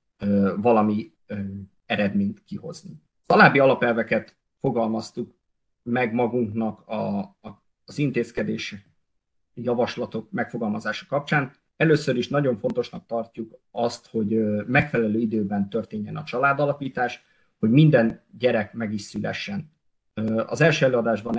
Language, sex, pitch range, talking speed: Hungarian, male, 110-140 Hz, 105 wpm